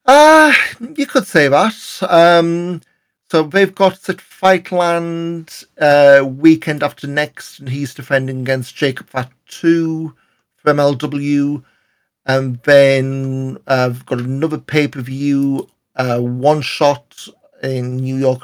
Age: 50-69